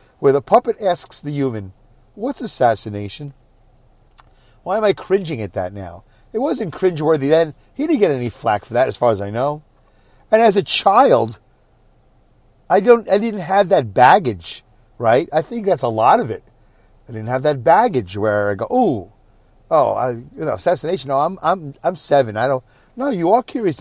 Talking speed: 190 wpm